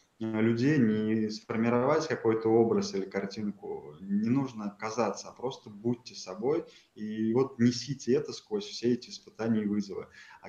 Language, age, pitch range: Russian, 20-39, 105-125 Hz